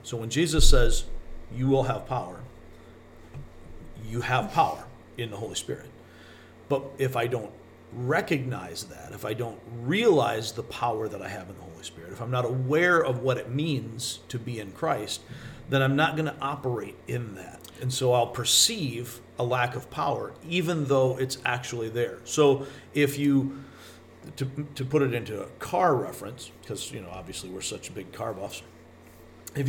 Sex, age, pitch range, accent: male, 40-59, 110-135 Hz, American